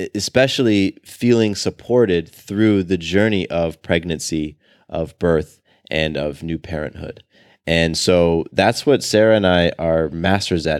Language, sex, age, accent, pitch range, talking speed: English, male, 20-39, American, 85-100 Hz, 135 wpm